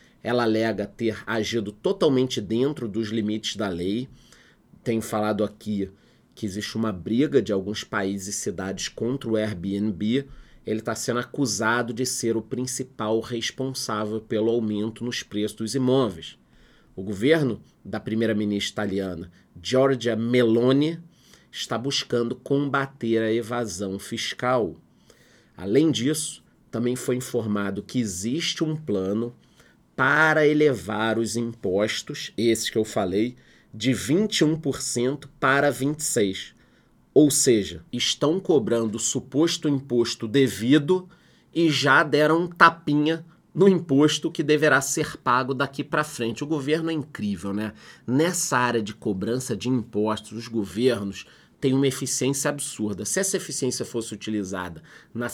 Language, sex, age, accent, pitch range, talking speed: Portuguese, male, 30-49, Brazilian, 110-140 Hz, 130 wpm